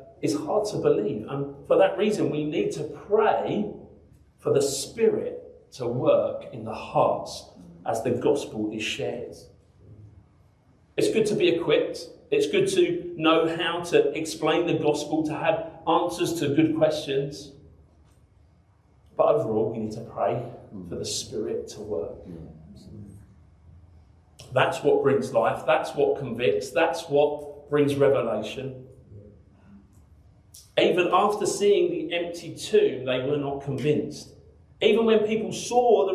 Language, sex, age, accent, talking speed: English, male, 40-59, British, 135 wpm